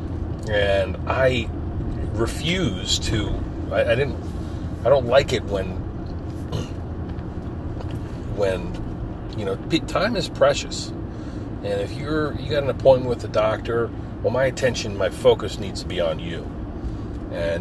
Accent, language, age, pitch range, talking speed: American, English, 40-59, 90-110 Hz, 135 wpm